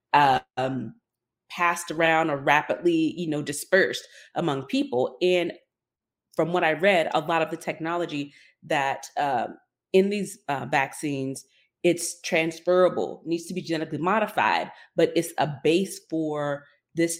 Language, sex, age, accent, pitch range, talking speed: English, female, 30-49, American, 145-180 Hz, 135 wpm